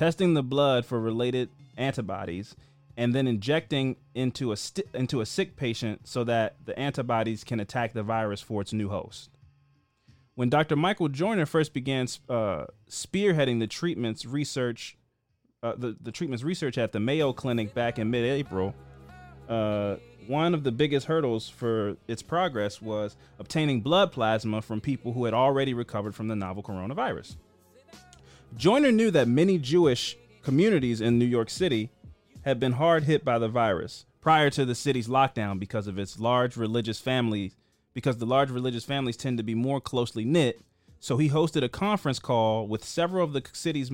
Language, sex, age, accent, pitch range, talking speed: English, male, 30-49, American, 110-140 Hz, 170 wpm